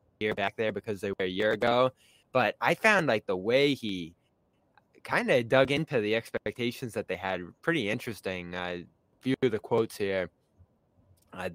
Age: 10-29